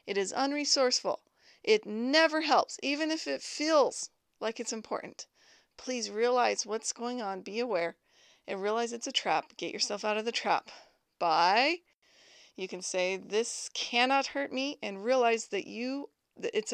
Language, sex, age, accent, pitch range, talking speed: English, female, 30-49, American, 200-270 Hz, 160 wpm